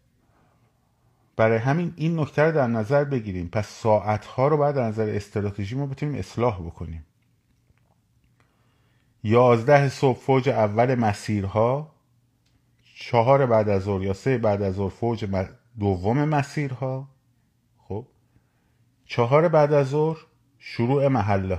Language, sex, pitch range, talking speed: Persian, male, 105-130 Hz, 115 wpm